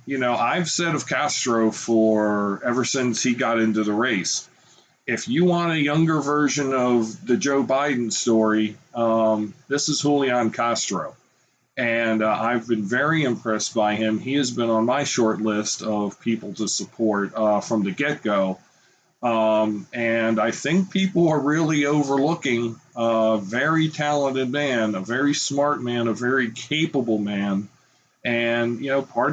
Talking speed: 160 wpm